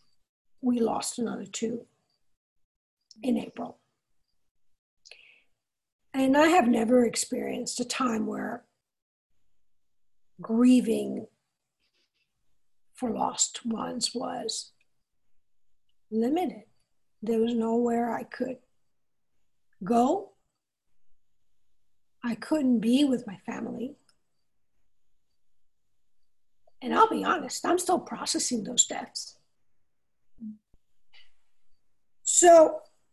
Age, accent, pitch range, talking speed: 60-79, American, 230-285 Hz, 75 wpm